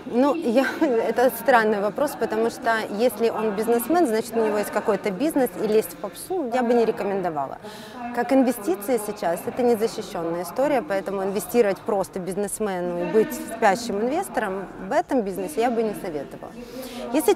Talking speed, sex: 160 wpm, female